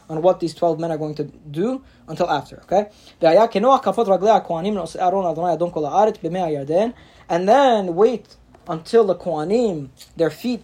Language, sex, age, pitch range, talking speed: English, male, 20-39, 160-200 Hz, 115 wpm